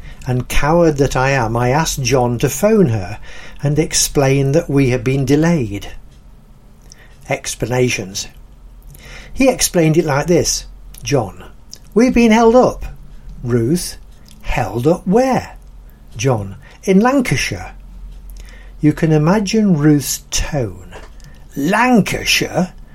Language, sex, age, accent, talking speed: English, male, 60-79, British, 110 wpm